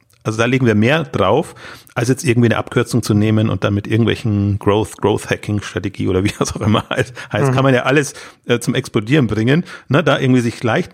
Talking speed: 210 wpm